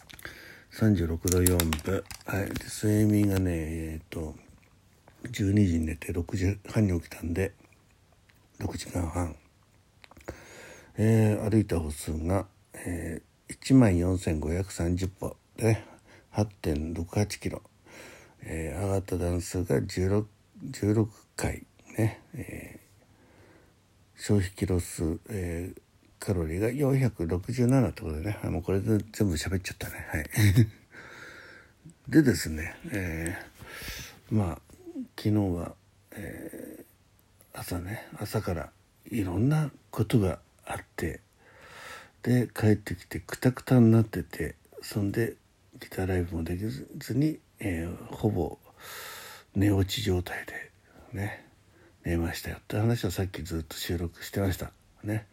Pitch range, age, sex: 90-110 Hz, 60-79, male